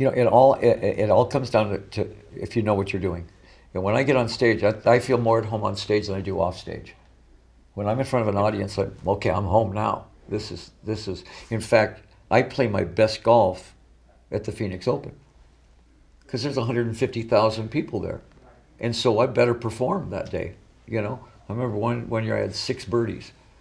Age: 60-79